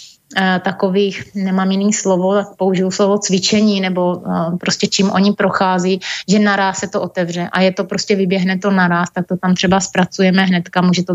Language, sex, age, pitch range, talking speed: Slovak, female, 30-49, 185-200 Hz, 180 wpm